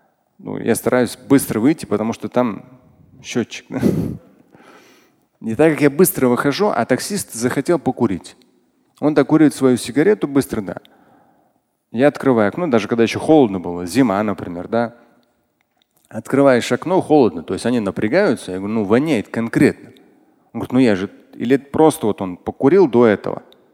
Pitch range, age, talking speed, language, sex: 115-155 Hz, 30-49, 155 wpm, Russian, male